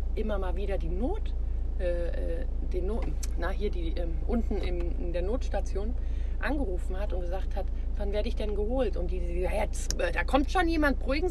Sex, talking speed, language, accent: female, 195 wpm, German, German